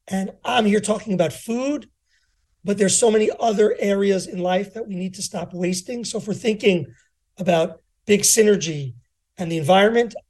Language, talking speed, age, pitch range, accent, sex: English, 175 wpm, 40-59, 175-215 Hz, American, male